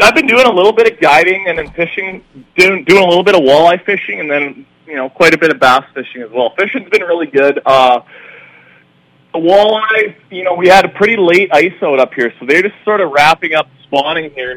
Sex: male